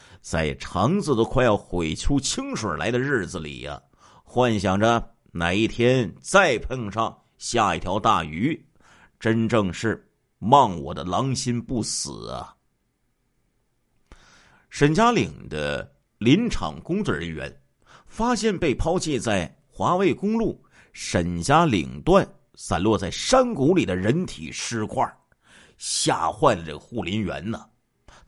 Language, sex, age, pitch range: Chinese, male, 50-69, 95-155 Hz